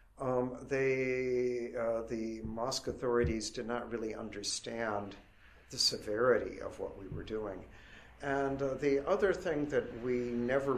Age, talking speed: 50-69, 140 wpm